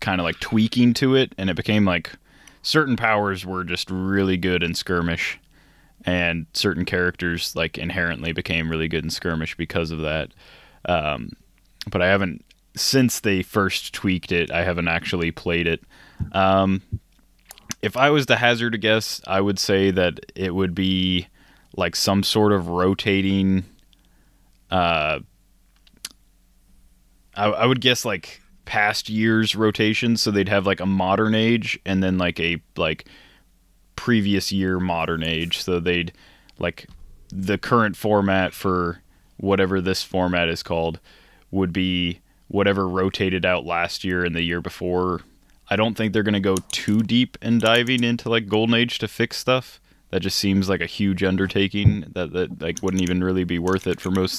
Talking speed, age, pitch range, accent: 165 wpm, 20-39, 90-105 Hz, American